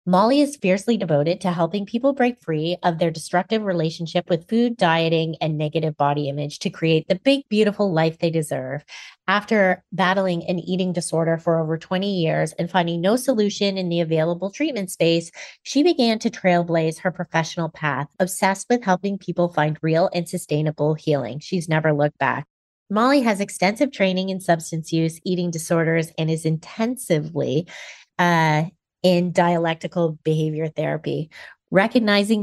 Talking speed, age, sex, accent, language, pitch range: 155 wpm, 30-49, female, American, English, 160-200 Hz